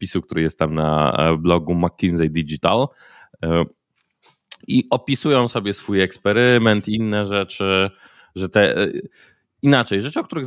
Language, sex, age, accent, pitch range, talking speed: Polish, male, 20-39, native, 95-110 Hz, 120 wpm